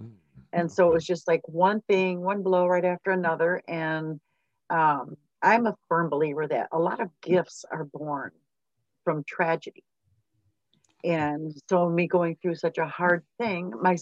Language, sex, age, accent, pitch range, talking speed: English, female, 50-69, American, 155-185 Hz, 165 wpm